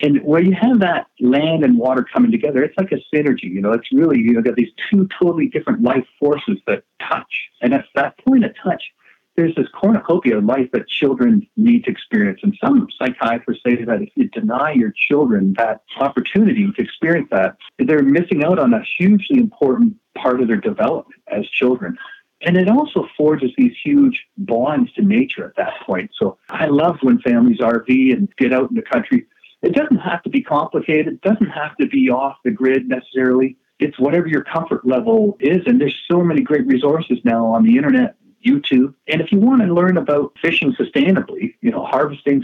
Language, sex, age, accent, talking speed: English, male, 50-69, American, 200 wpm